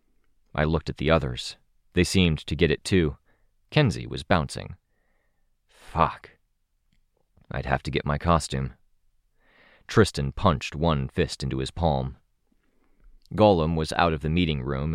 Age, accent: 30-49, American